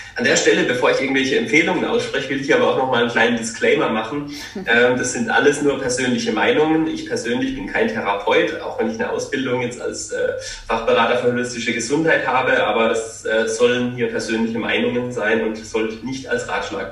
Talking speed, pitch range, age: 200 wpm, 120-160 Hz, 30-49